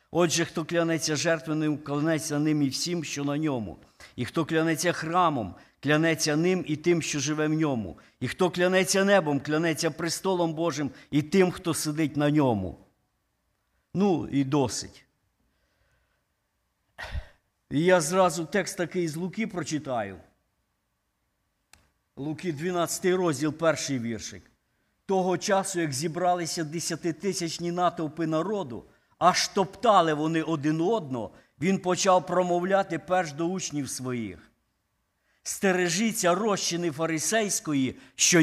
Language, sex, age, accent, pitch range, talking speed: Ukrainian, male, 50-69, native, 155-185 Hz, 115 wpm